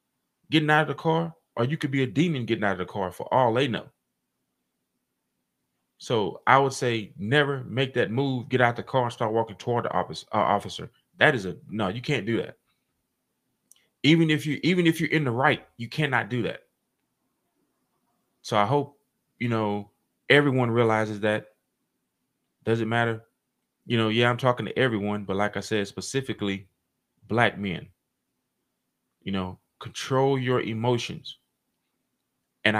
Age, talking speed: 20-39, 165 wpm